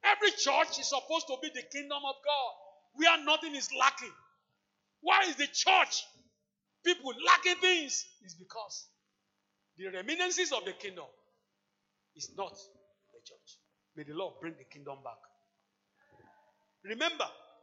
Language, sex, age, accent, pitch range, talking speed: English, male, 50-69, Nigerian, 180-280 Hz, 140 wpm